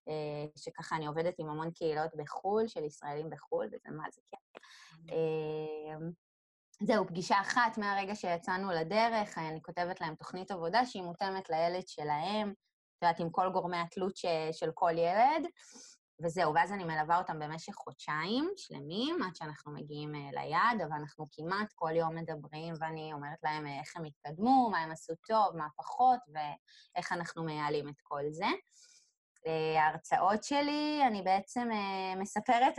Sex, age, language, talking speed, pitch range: female, 20-39, Hebrew, 145 wpm, 160-210 Hz